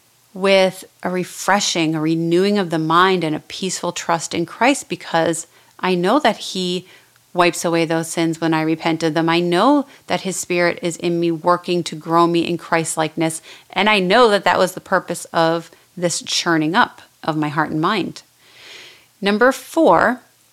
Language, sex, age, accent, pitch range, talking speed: English, female, 30-49, American, 170-210 Hz, 180 wpm